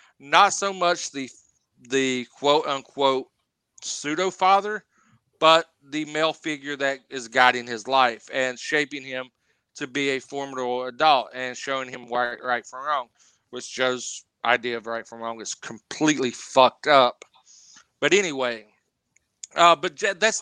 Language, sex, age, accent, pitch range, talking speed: English, male, 40-59, American, 125-150 Hz, 140 wpm